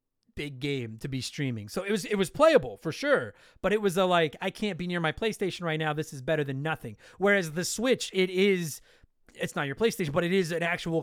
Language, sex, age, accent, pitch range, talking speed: English, male, 30-49, American, 150-200 Hz, 245 wpm